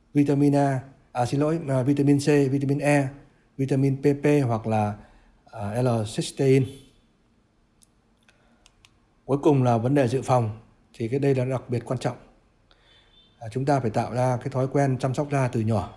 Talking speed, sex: 160 wpm, male